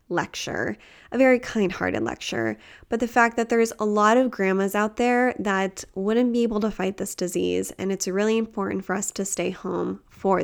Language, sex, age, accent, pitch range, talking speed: English, female, 10-29, American, 190-225 Hz, 195 wpm